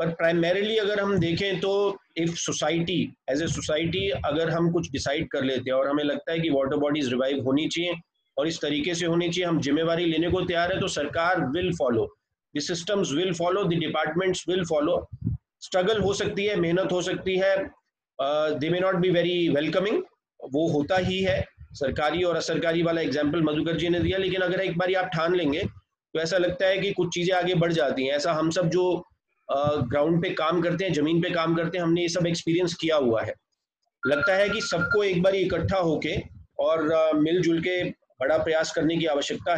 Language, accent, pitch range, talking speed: Hindi, native, 155-185 Hz, 205 wpm